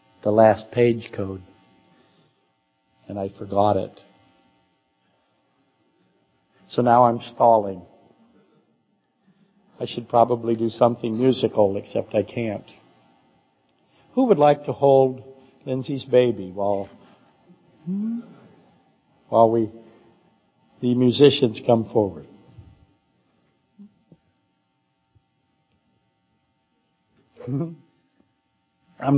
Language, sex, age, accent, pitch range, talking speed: English, male, 60-79, American, 110-140 Hz, 75 wpm